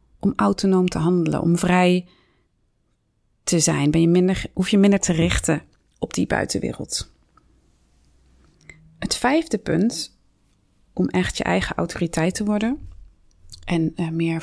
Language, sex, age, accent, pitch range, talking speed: Dutch, female, 30-49, Dutch, 125-210 Hz, 115 wpm